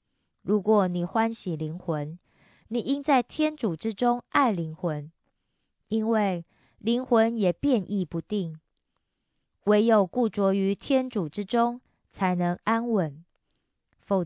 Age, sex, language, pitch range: 20-39, female, Korean, 175-230 Hz